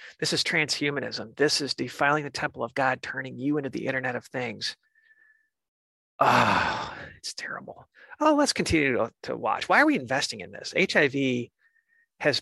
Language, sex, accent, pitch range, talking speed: English, male, American, 130-170 Hz, 165 wpm